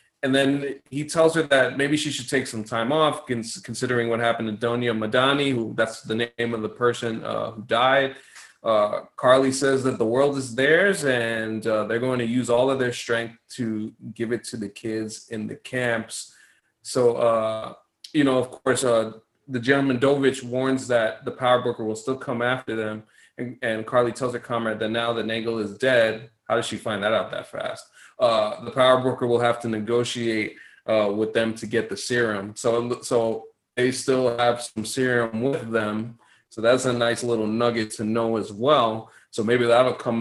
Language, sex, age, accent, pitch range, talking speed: English, male, 20-39, American, 115-130 Hz, 200 wpm